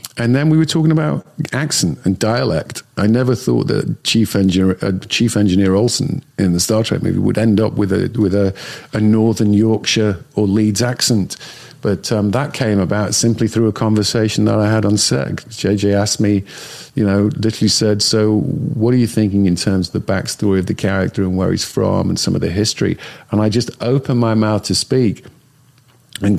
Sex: male